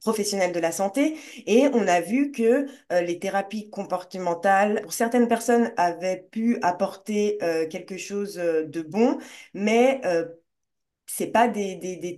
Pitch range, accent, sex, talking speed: 185-240 Hz, French, female, 165 wpm